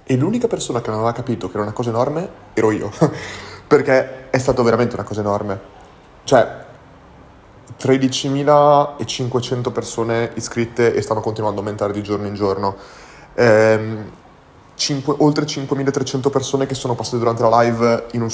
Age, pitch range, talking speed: 30-49, 110-130 Hz, 155 wpm